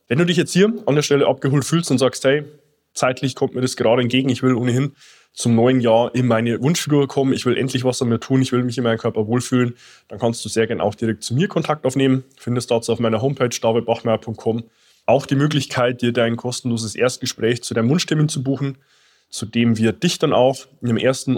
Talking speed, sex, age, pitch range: 225 wpm, male, 20-39, 115-135 Hz